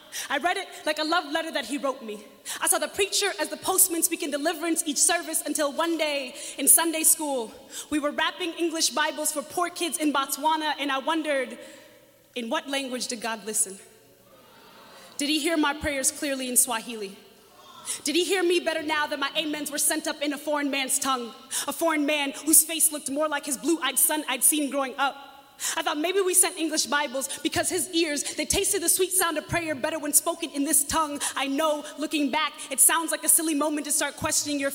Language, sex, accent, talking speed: English, female, American, 215 wpm